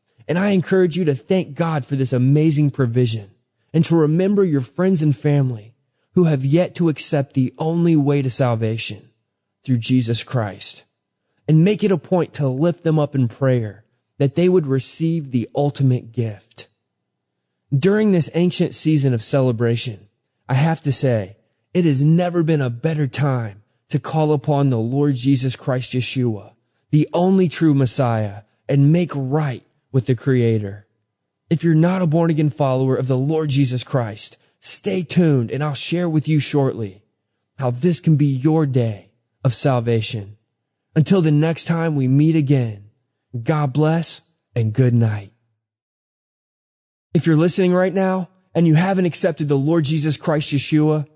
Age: 20-39